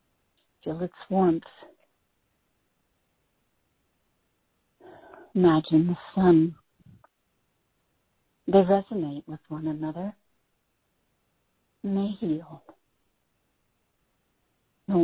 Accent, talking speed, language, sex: American, 60 wpm, English, female